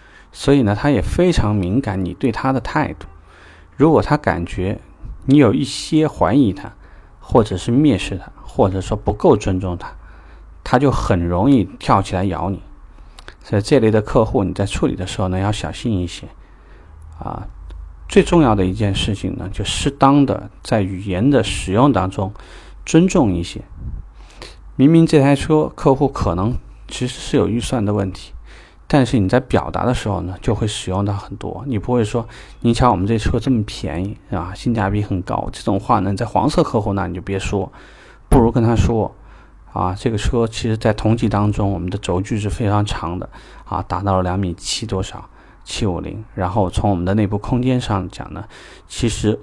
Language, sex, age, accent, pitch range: Chinese, male, 30-49, native, 95-120 Hz